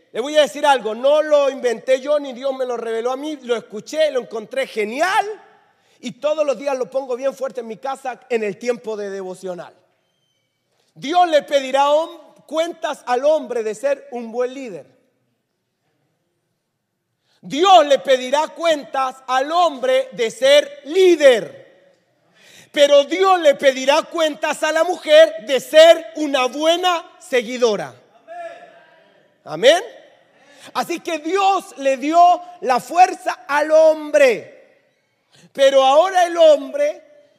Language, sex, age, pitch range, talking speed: Spanish, male, 40-59, 240-320 Hz, 135 wpm